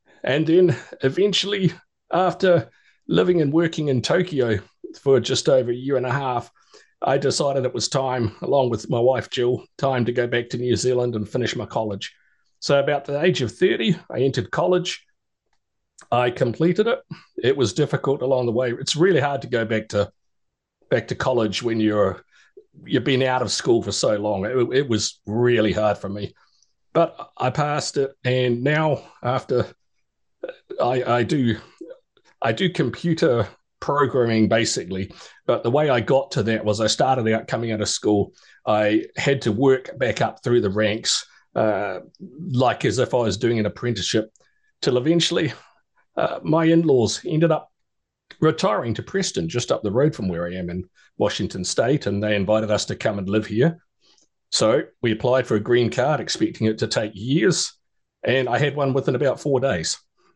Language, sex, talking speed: English, male, 180 wpm